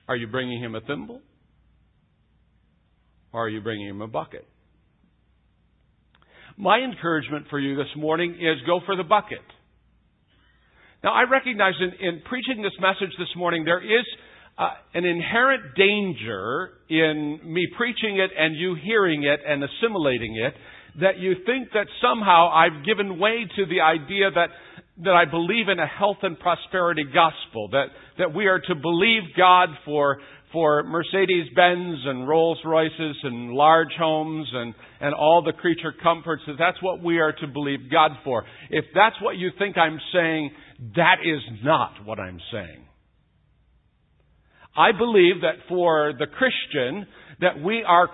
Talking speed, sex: 155 wpm, male